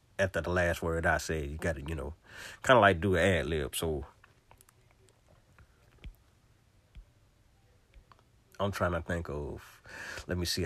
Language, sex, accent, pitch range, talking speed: English, male, American, 90-110 Hz, 140 wpm